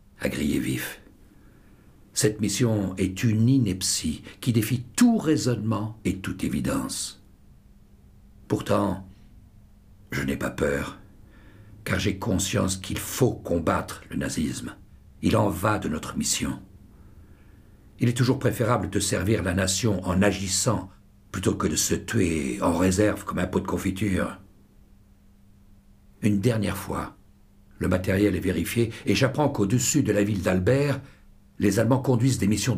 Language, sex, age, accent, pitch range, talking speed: French, male, 60-79, French, 100-120 Hz, 135 wpm